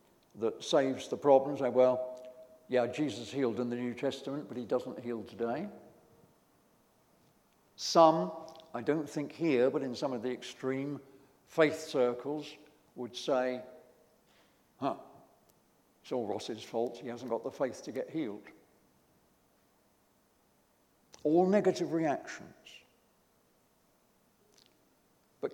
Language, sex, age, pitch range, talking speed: English, male, 60-79, 145-190 Hz, 115 wpm